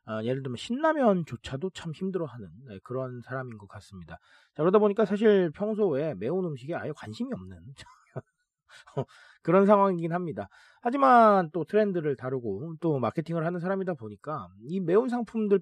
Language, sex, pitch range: Korean, male, 125-200 Hz